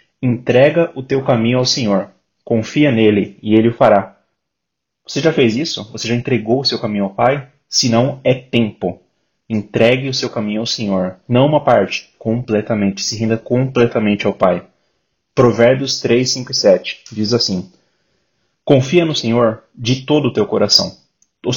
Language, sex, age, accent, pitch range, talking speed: Portuguese, male, 30-49, Brazilian, 110-130 Hz, 155 wpm